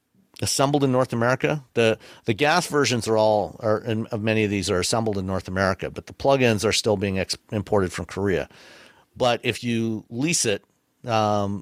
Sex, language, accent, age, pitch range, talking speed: male, English, American, 50-69, 100-120 Hz, 190 wpm